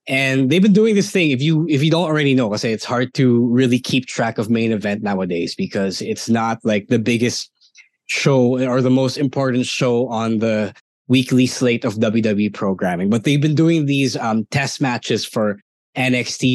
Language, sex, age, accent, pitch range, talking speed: English, male, 20-39, Filipino, 120-145 Hz, 195 wpm